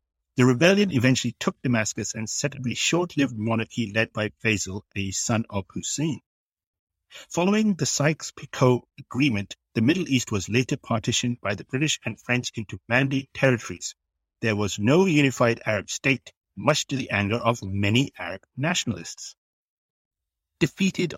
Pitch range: 95-125 Hz